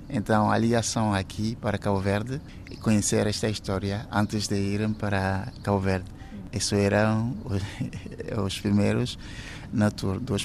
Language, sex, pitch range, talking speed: Portuguese, male, 100-125 Hz, 140 wpm